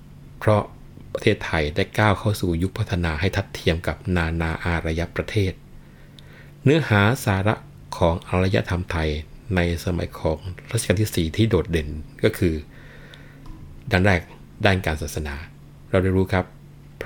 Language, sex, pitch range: Thai, male, 85-105 Hz